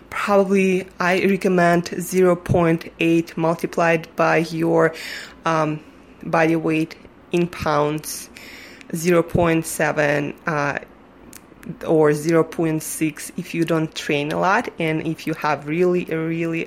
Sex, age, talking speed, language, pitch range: female, 20-39, 95 wpm, English, 155-175 Hz